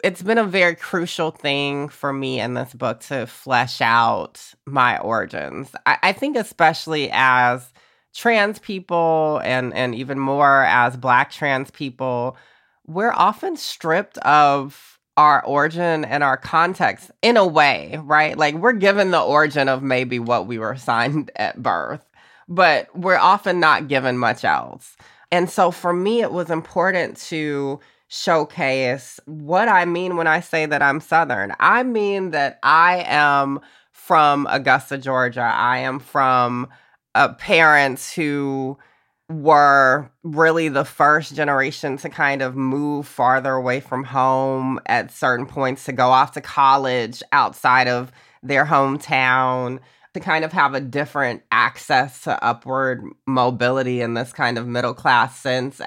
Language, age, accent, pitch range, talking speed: English, 20-39, American, 130-160 Hz, 145 wpm